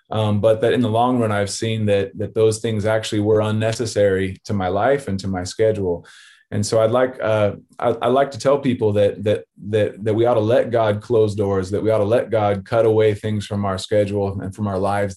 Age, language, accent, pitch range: 20-39, English, American, 100-120 Hz